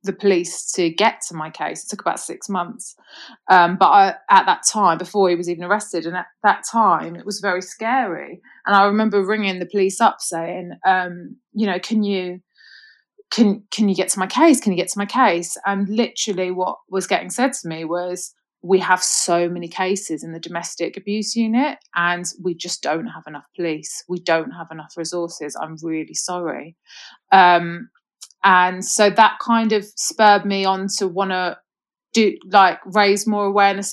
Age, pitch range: 30-49, 180-230 Hz